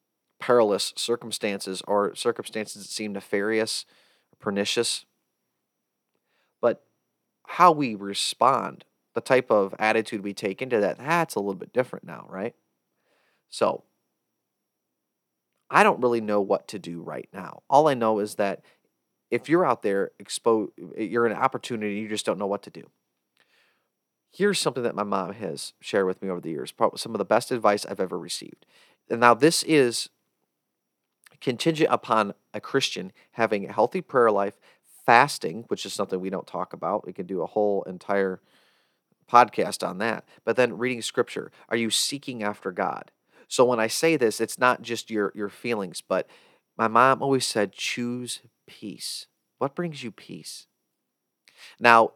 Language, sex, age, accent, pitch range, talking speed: English, male, 30-49, American, 100-125 Hz, 160 wpm